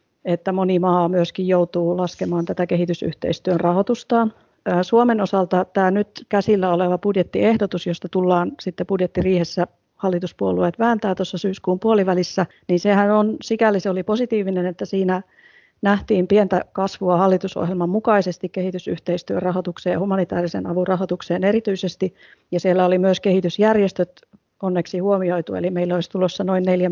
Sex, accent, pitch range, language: female, native, 175-195 Hz, Finnish